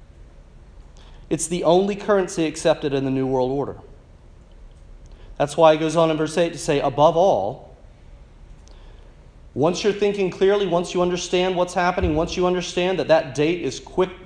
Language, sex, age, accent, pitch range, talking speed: English, male, 40-59, American, 135-175 Hz, 165 wpm